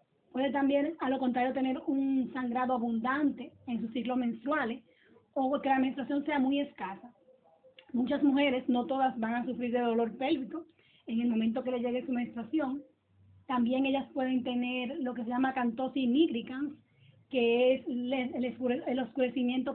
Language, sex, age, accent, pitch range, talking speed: Spanish, female, 20-39, American, 245-280 Hz, 160 wpm